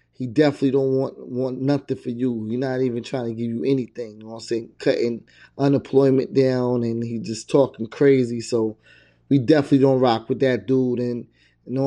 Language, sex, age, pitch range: English, male, 20-39, 115-135 Hz